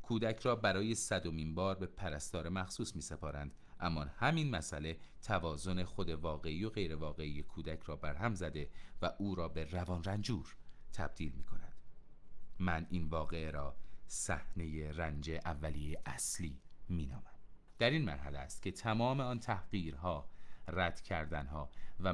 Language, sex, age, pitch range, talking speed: Persian, male, 30-49, 80-105 Hz, 140 wpm